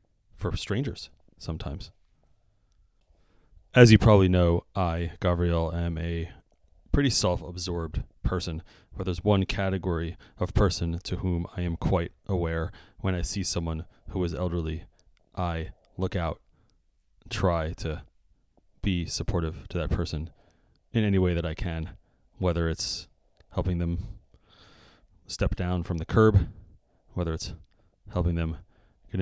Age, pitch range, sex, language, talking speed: 30-49, 85-95 Hz, male, English, 130 wpm